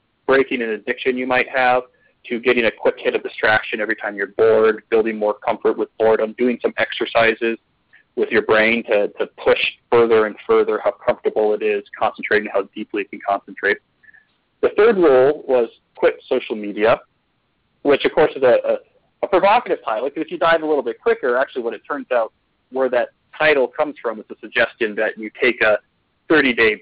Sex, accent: male, American